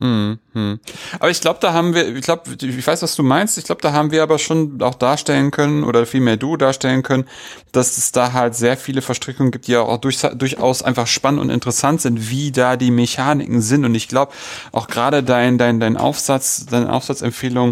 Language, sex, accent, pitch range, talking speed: German, male, German, 115-140 Hz, 215 wpm